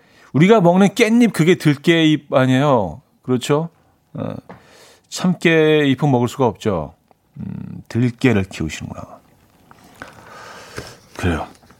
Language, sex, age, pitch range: Korean, male, 40-59, 115-150 Hz